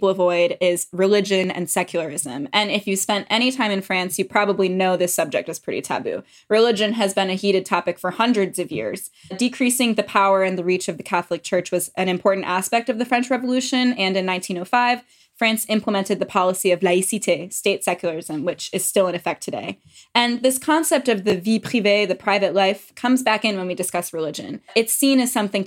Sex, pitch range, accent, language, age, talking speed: female, 180-215 Hz, American, English, 10-29, 205 wpm